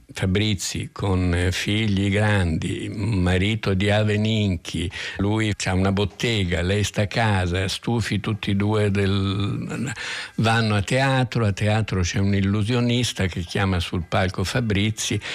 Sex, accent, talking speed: male, native, 130 wpm